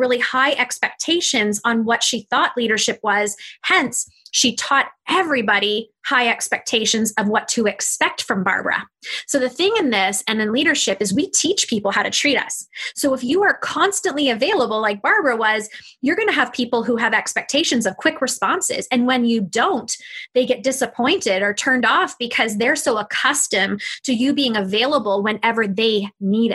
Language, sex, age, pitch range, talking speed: English, female, 20-39, 220-270 Hz, 175 wpm